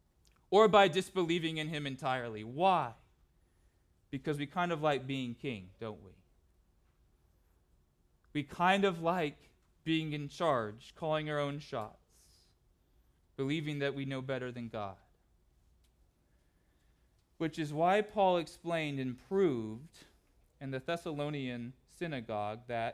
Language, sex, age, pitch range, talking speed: English, male, 20-39, 110-175 Hz, 120 wpm